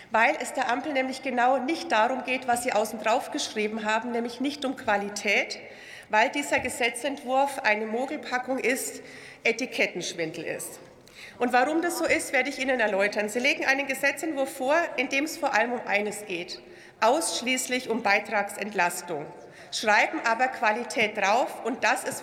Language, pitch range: German, 235-290 Hz